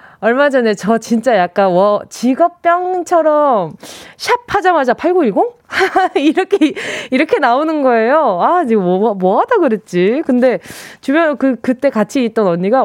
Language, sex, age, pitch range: Korean, female, 20-39, 205-320 Hz